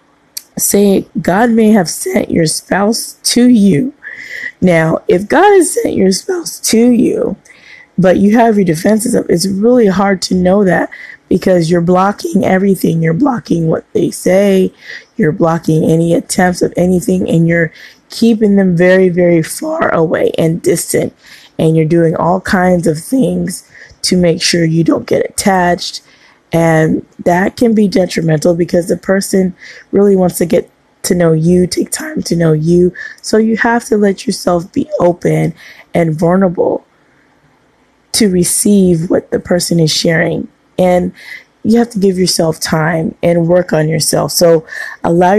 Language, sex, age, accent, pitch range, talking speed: English, female, 20-39, American, 170-210 Hz, 155 wpm